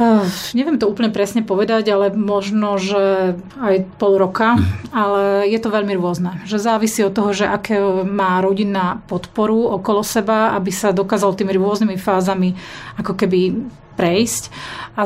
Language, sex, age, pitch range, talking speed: Slovak, female, 30-49, 190-215 Hz, 150 wpm